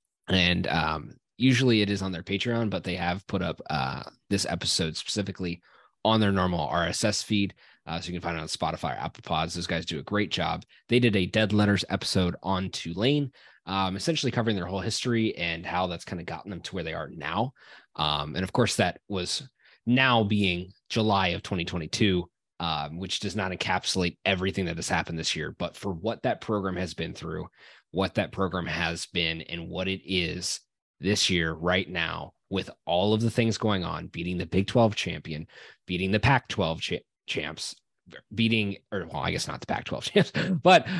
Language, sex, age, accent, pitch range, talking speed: English, male, 20-39, American, 90-110 Hz, 200 wpm